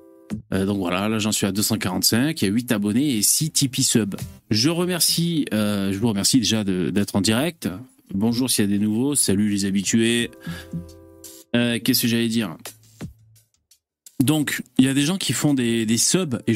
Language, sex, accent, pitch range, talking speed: French, male, French, 105-150 Hz, 190 wpm